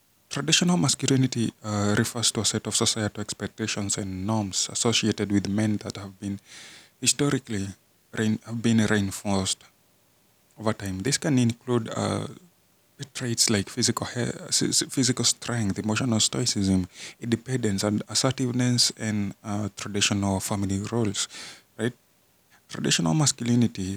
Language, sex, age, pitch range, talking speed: Swahili, male, 20-39, 100-120 Hz, 120 wpm